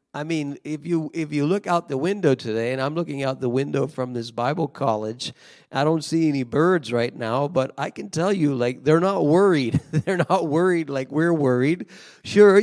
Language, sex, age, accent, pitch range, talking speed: English, male, 40-59, American, 135-180 Hz, 210 wpm